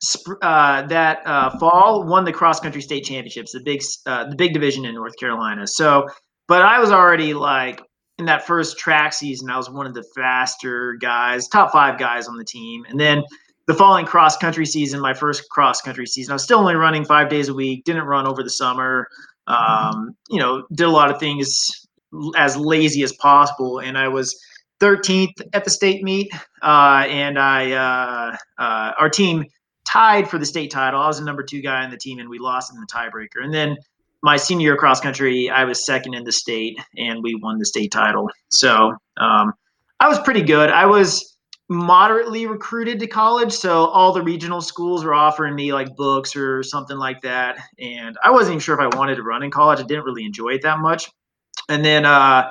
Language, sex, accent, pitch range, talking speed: English, male, American, 130-165 Hz, 210 wpm